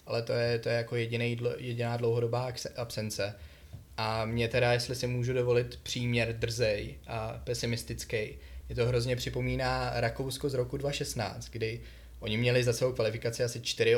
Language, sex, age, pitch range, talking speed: Czech, male, 20-39, 115-125 Hz, 160 wpm